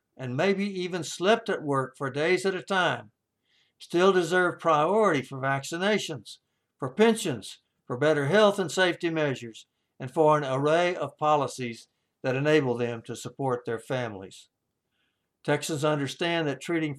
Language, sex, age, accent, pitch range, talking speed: English, male, 60-79, American, 120-160 Hz, 145 wpm